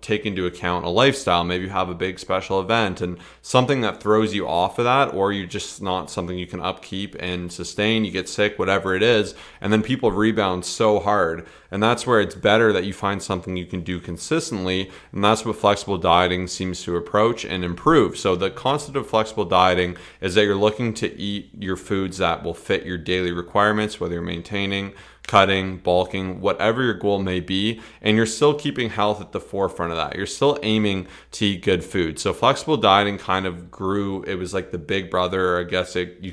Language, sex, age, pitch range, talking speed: English, male, 30-49, 90-105 Hz, 210 wpm